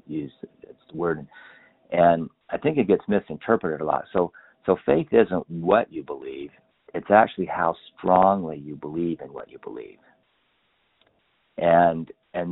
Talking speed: 145 wpm